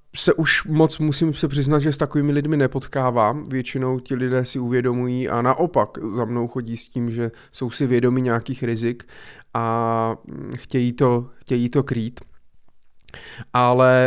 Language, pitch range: Czech, 120-145 Hz